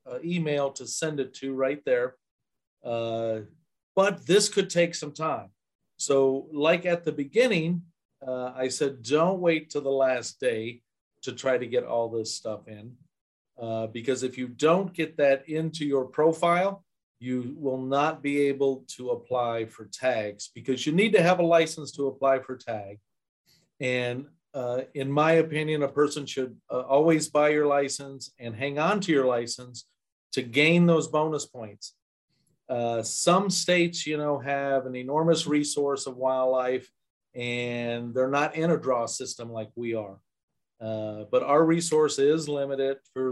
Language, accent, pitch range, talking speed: English, American, 120-150 Hz, 165 wpm